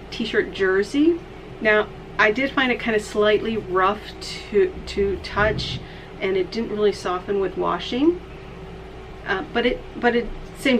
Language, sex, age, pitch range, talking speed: Vietnamese, female, 40-59, 185-225 Hz, 155 wpm